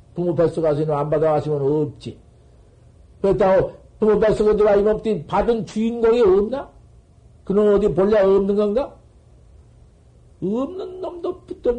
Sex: male